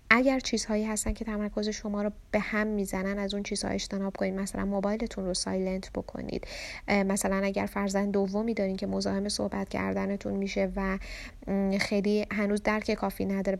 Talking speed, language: 160 wpm, Persian